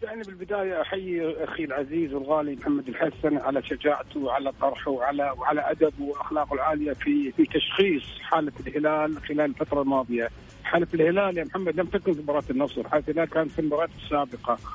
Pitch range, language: 145-170 Hz, Arabic